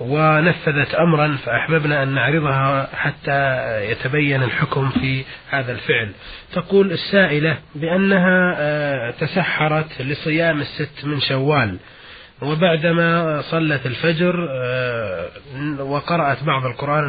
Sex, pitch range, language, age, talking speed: male, 140-165 Hz, Arabic, 30-49, 90 wpm